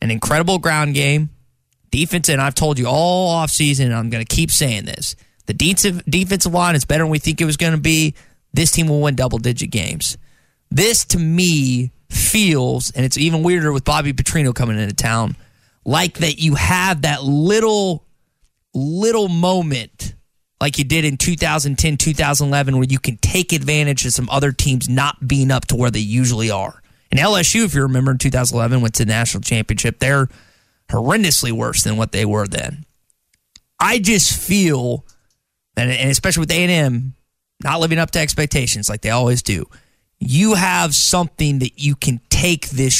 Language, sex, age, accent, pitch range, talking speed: English, male, 20-39, American, 125-165 Hz, 175 wpm